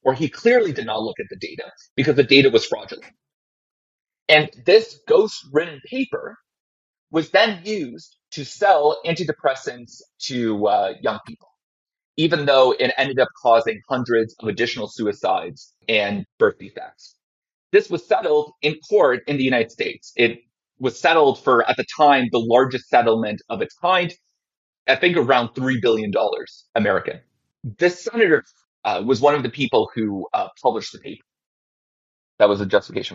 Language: English